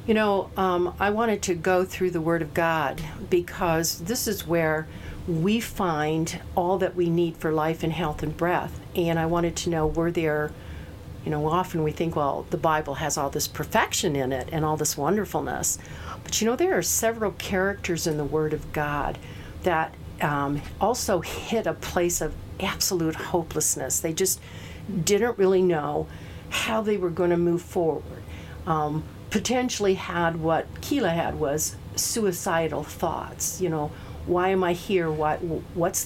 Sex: female